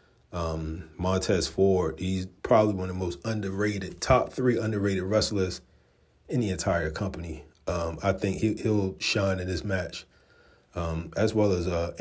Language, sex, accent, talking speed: English, male, American, 160 wpm